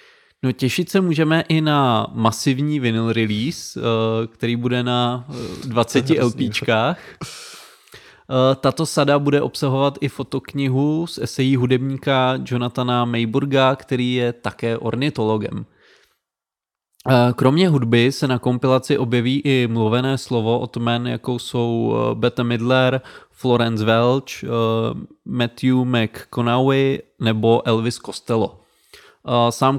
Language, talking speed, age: Czech, 105 wpm, 20-39